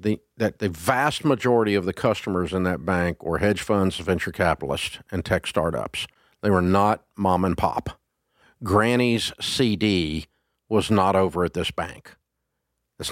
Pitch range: 90-110 Hz